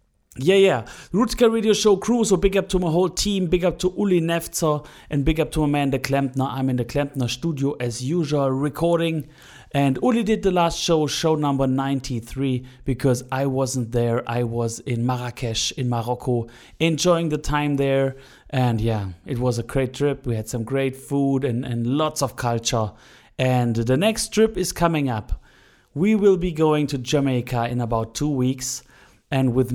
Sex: male